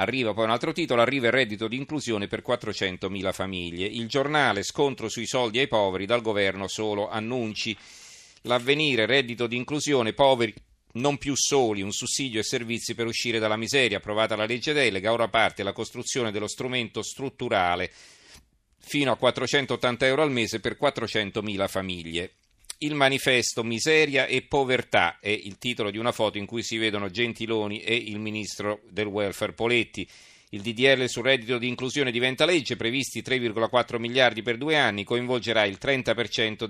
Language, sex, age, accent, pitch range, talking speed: Italian, male, 40-59, native, 105-130 Hz, 160 wpm